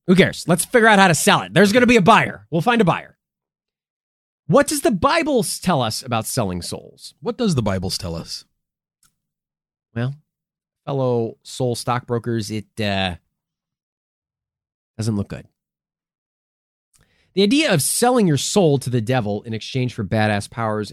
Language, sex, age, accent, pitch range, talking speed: English, male, 30-49, American, 115-185 Hz, 165 wpm